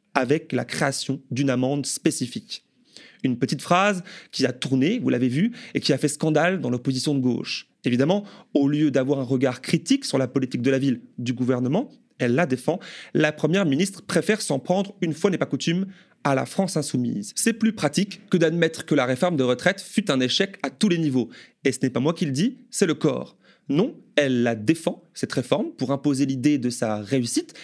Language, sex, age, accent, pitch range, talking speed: French, male, 30-49, French, 135-195 Hz, 210 wpm